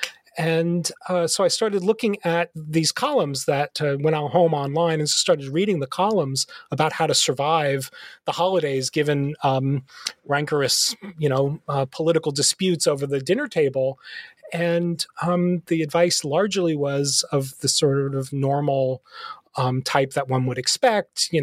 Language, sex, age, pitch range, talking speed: English, male, 30-49, 135-180 Hz, 155 wpm